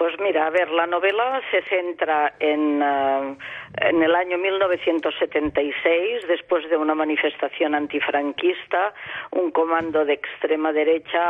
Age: 40-59